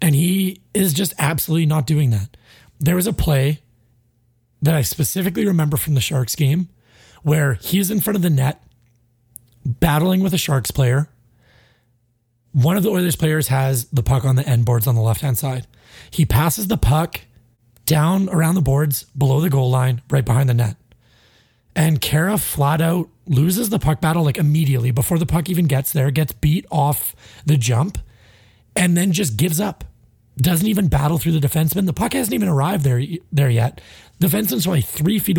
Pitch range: 125-170 Hz